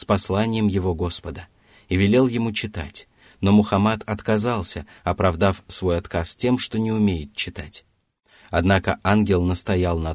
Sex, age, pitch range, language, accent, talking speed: male, 30-49, 90-110 Hz, Russian, native, 135 wpm